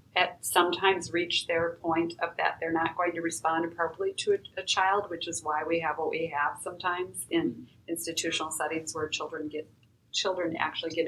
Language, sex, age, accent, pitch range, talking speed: English, female, 40-59, American, 155-175 Hz, 190 wpm